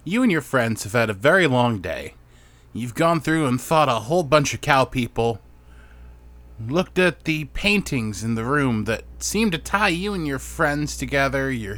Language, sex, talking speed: English, male, 195 wpm